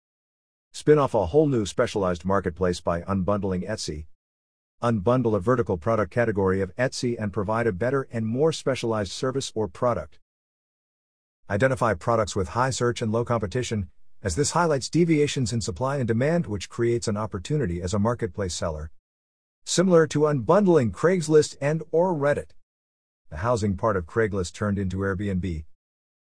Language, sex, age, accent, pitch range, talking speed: English, male, 50-69, American, 90-125 Hz, 150 wpm